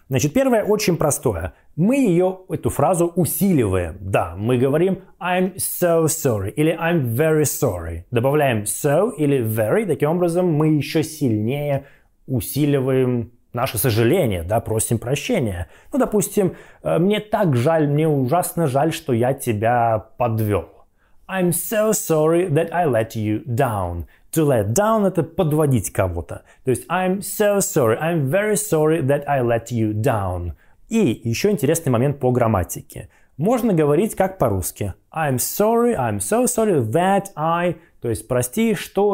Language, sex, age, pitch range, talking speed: Russian, male, 20-39, 115-180 Hz, 145 wpm